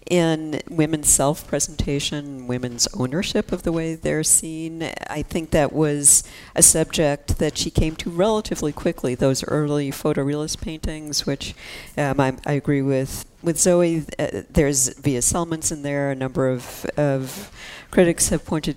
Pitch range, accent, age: 135-160 Hz, American, 50-69